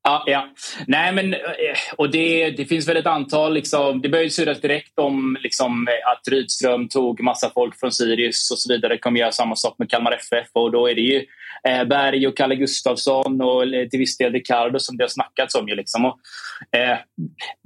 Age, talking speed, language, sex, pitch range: 20-39, 205 wpm, Swedish, male, 120-155 Hz